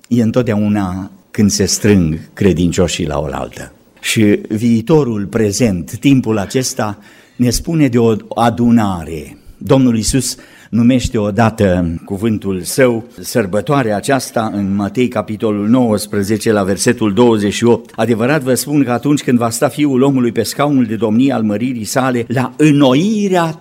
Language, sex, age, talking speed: Romanian, male, 50-69, 130 wpm